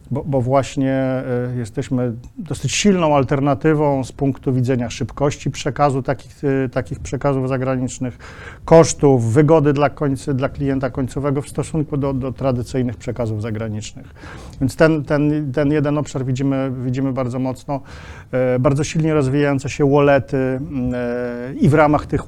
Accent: native